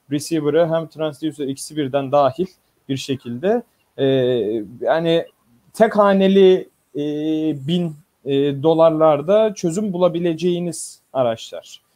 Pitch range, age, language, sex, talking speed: 150-195 Hz, 40-59, Turkish, male, 95 wpm